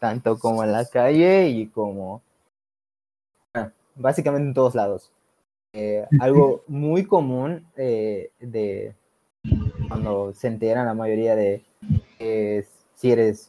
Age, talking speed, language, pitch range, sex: 20-39, 110 wpm, Spanish, 110-130 Hz, male